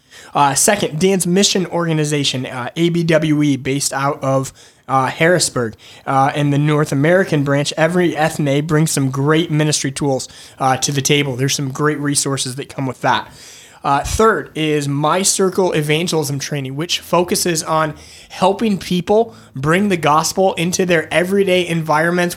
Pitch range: 145-175 Hz